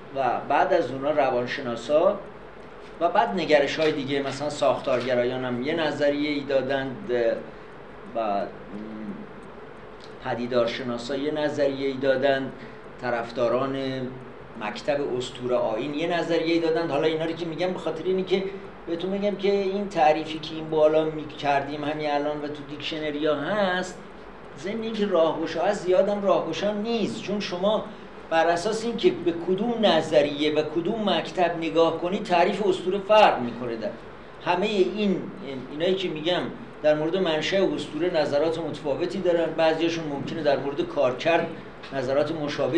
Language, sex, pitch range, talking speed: Persian, male, 140-180 Hz, 140 wpm